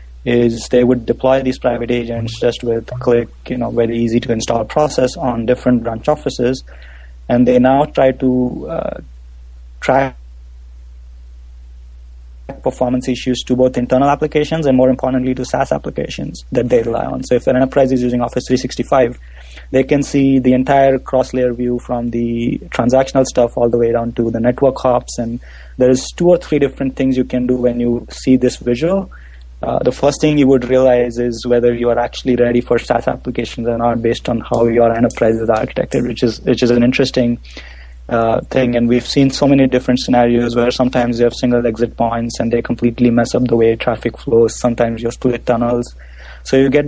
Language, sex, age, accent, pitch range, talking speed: English, male, 30-49, Indian, 115-130 Hz, 195 wpm